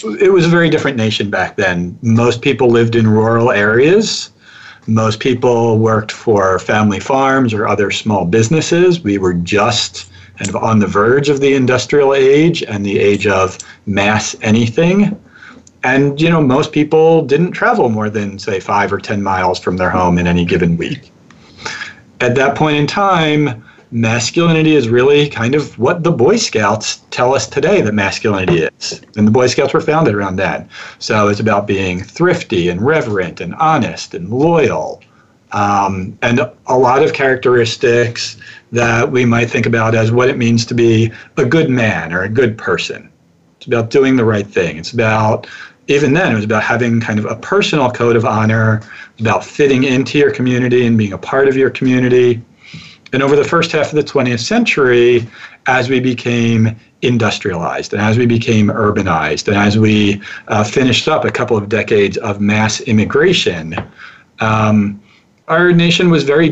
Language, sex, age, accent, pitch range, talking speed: English, male, 40-59, American, 105-140 Hz, 175 wpm